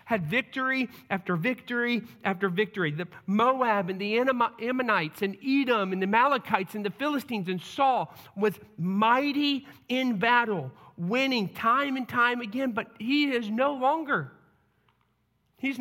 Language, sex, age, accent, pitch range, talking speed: English, male, 40-59, American, 165-230 Hz, 135 wpm